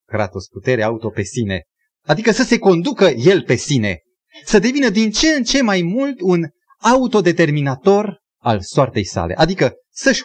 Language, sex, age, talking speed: Romanian, male, 30-49, 160 wpm